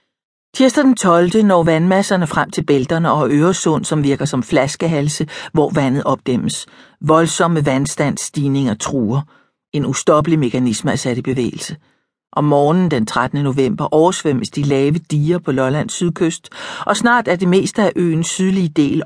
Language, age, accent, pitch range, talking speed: Danish, 60-79, native, 135-165 Hz, 155 wpm